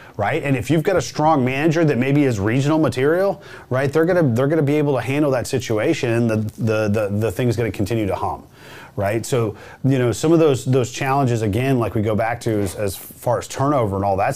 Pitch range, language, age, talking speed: 115-135 Hz, English, 30-49, 240 wpm